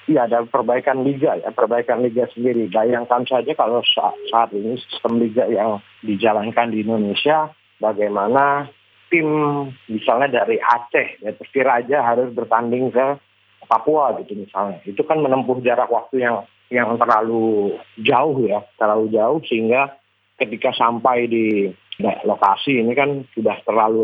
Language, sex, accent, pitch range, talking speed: Indonesian, male, native, 105-125 Hz, 140 wpm